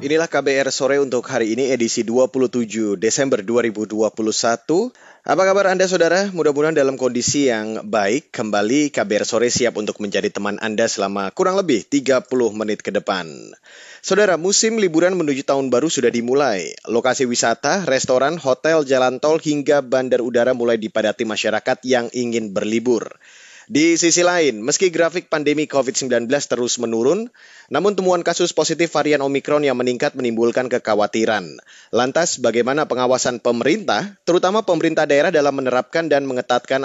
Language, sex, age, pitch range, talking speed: Indonesian, male, 20-39, 120-160 Hz, 140 wpm